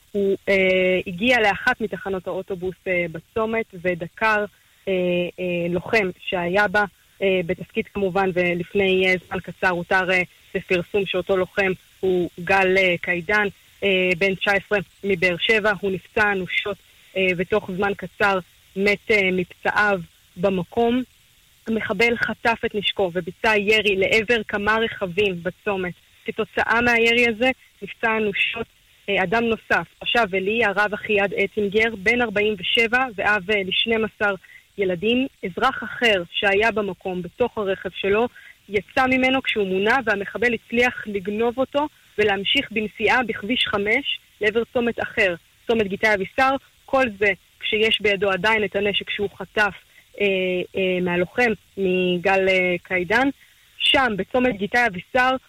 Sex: female